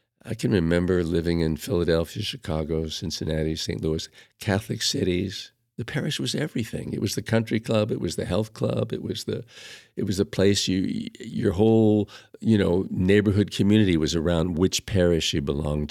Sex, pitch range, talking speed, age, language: male, 85-105 Hz, 175 wpm, 50-69, English